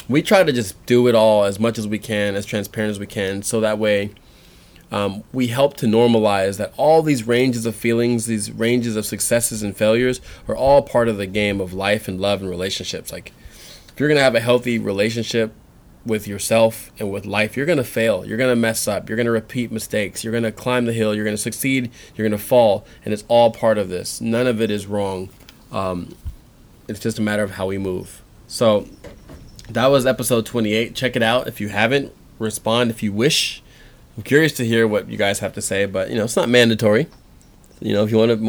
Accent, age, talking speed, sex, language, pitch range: American, 20-39, 230 wpm, male, English, 105-120 Hz